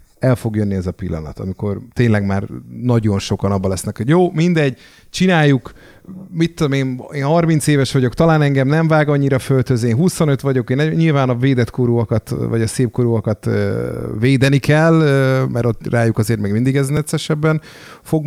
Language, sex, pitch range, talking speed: Hungarian, male, 105-135 Hz, 170 wpm